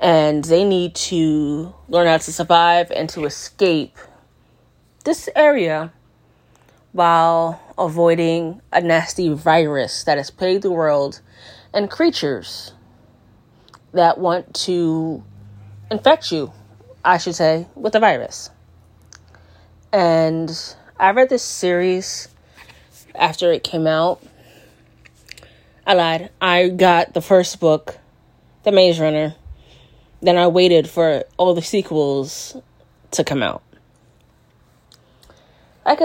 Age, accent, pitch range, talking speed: 30-49, American, 145-180 Hz, 110 wpm